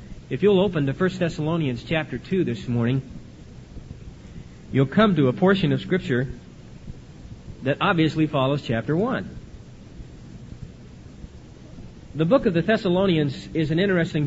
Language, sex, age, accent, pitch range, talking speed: English, male, 40-59, American, 135-180 Hz, 125 wpm